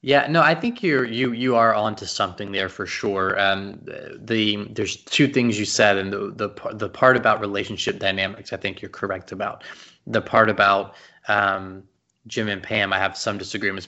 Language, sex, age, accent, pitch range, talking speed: English, male, 20-39, American, 100-115 Hz, 200 wpm